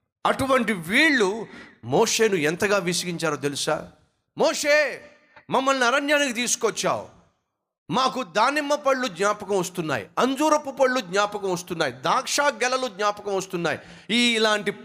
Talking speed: 100 wpm